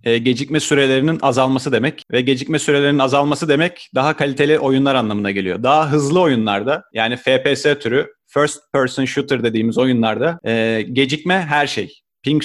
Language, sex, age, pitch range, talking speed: Turkish, male, 40-59, 130-170 Hz, 140 wpm